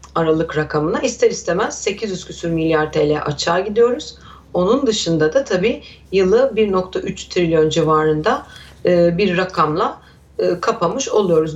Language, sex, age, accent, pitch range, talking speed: Turkish, female, 40-59, native, 160-210 Hz, 115 wpm